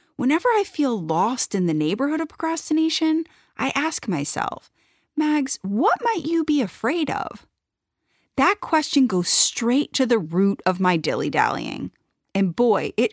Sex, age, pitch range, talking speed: female, 30-49, 185-295 Hz, 145 wpm